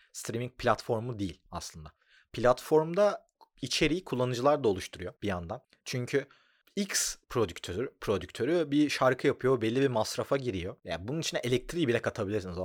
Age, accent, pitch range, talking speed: 30-49, native, 100-155 Hz, 135 wpm